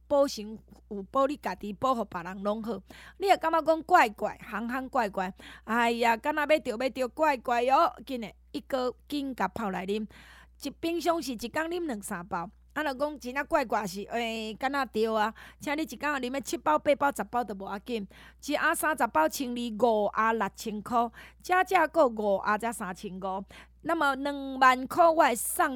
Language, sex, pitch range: Chinese, female, 215-300 Hz